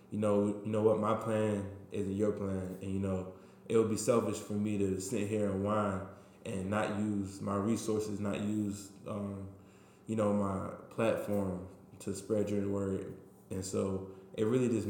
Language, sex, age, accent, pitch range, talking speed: English, male, 20-39, American, 100-105 Hz, 180 wpm